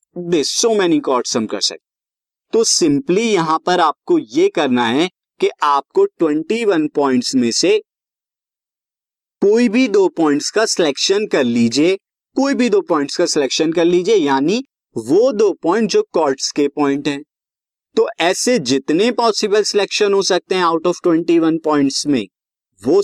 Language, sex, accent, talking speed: Hindi, male, native, 145 wpm